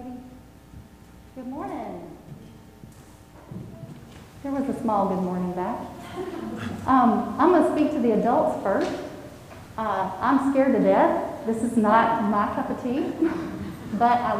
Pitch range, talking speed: 205-245 Hz, 135 wpm